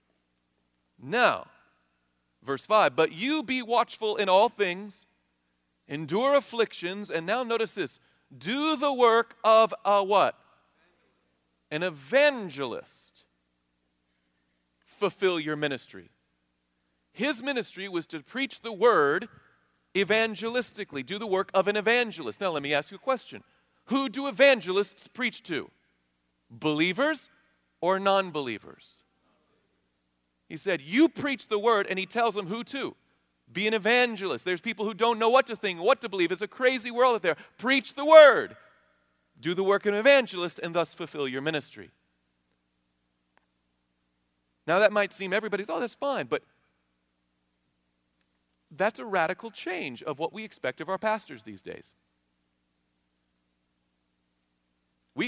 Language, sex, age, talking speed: English, male, 40-59, 135 wpm